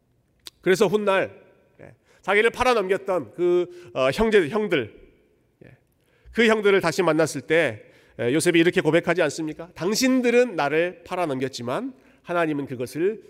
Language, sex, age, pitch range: Korean, male, 40-59, 135-200 Hz